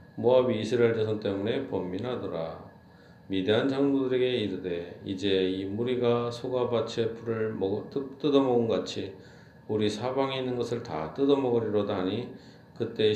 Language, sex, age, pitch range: Korean, male, 40-59, 100-125 Hz